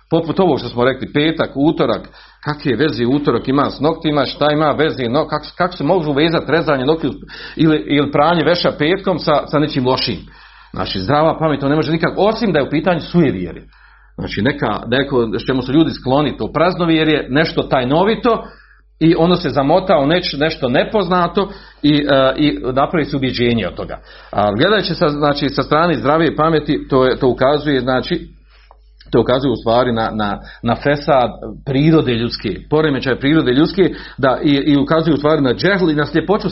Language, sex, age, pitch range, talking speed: Croatian, male, 40-59, 135-170 Hz, 180 wpm